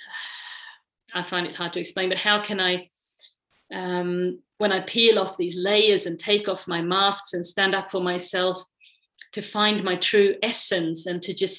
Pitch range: 180-210 Hz